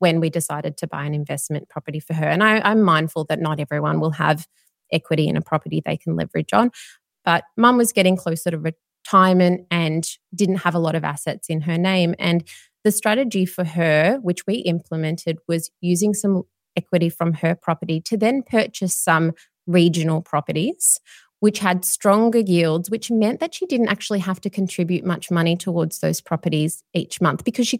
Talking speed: 185 wpm